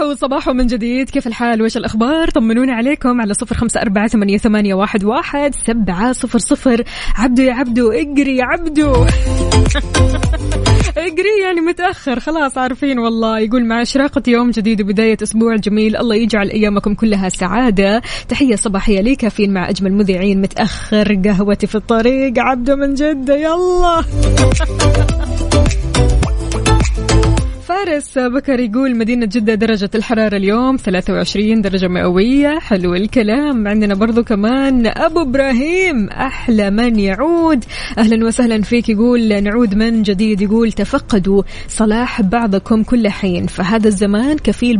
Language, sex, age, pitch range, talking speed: Arabic, female, 20-39, 205-260 Hz, 125 wpm